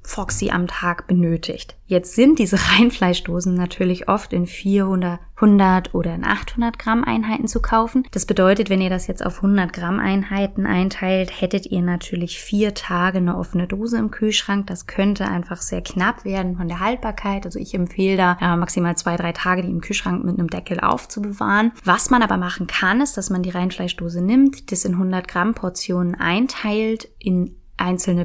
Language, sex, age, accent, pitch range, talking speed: German, female, 20-39, German, 175-200 Hz, 180 wpm